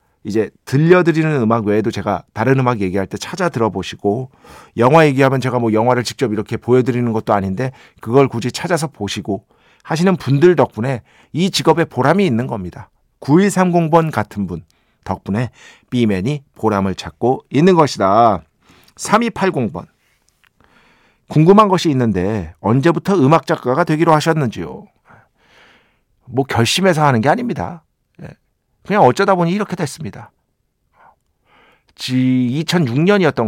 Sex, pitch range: male, 110-160 Hz